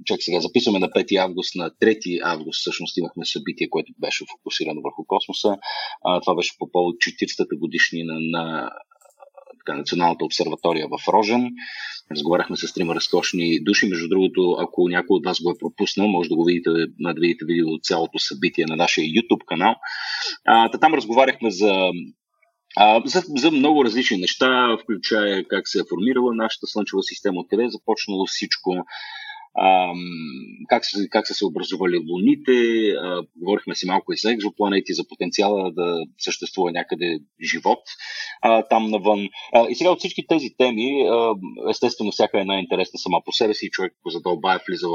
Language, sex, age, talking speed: Bulgarian, male, 30-49, 165 wpm